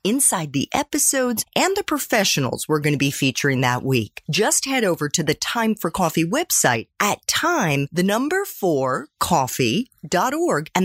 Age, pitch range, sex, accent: 40-59, 155-255 Hz, female, American